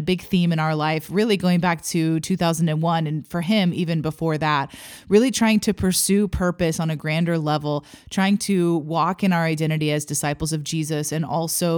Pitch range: 155-185 Hz